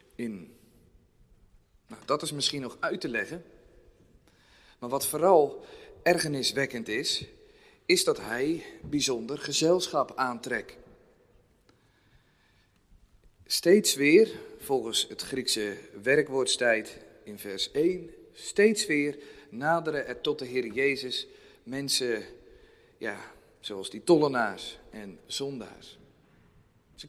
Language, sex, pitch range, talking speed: Dutch, male, 140-200 Hz, 100 wpm